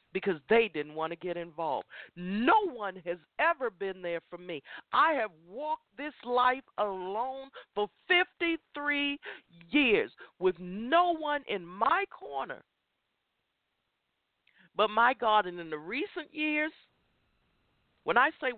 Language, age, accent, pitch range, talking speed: English, 50-69, American, 200-280 Hz, 130 wpm